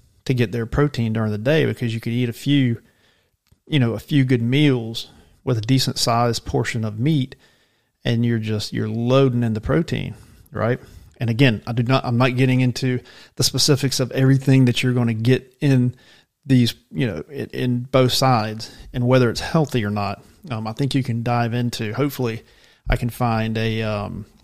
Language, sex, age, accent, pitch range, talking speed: English, male, 40-59, American, 110-130 Hz, 195 wpm